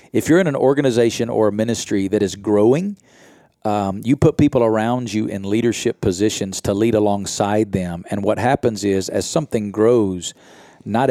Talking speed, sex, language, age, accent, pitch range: 175 wpm, male, English, 40-59, American, 100-120 Hz